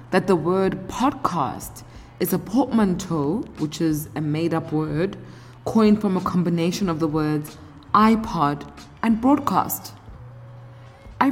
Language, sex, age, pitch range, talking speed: English, female, 20-39, 140-195 Hz, 120 wpm